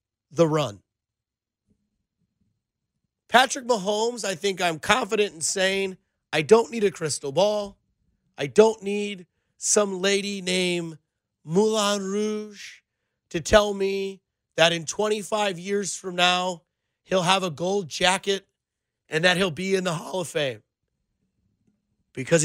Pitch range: 165-200 Hz